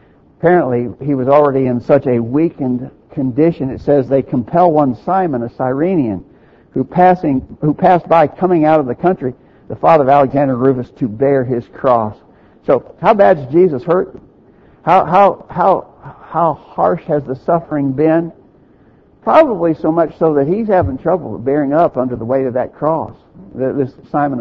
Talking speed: 170 wpm